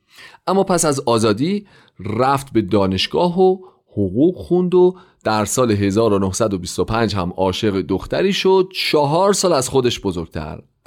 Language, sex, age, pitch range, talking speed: Persian, male, 40-59, 100-160 Hz, 125 wpm